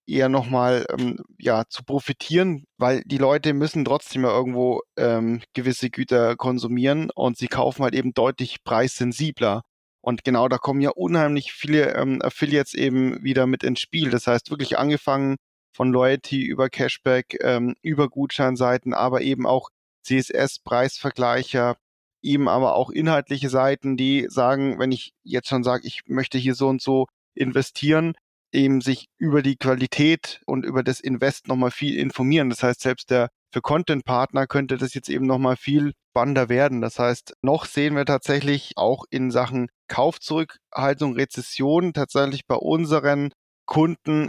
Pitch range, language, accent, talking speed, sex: 125-145 Hz, German, German, 155 wpm, male